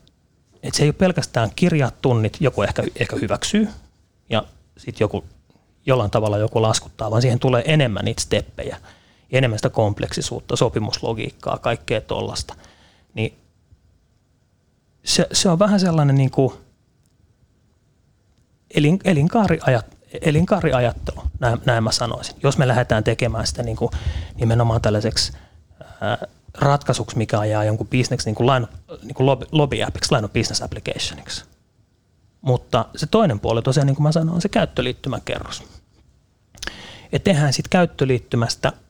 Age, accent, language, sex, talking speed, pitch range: 30-49, native, Finnish, male, 115 wpm, 110-140 Hz